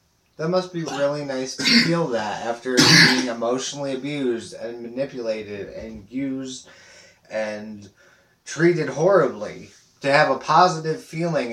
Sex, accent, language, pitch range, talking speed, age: male, American, English, 115-145 Hz, 125 wpm, 30-49